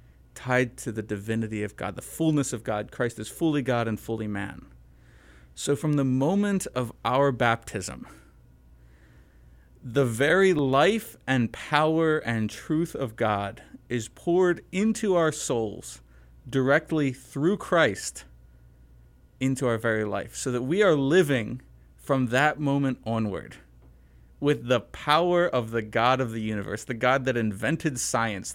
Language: English